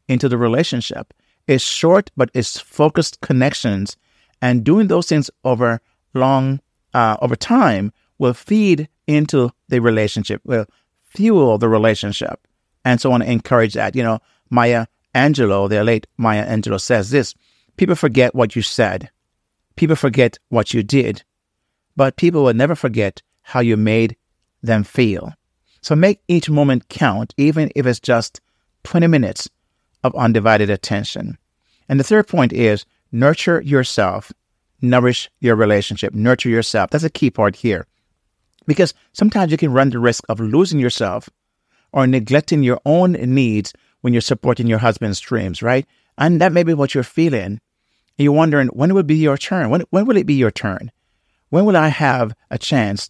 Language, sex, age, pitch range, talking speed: English, male, 50-69, 110-145 Hz, 165 wpm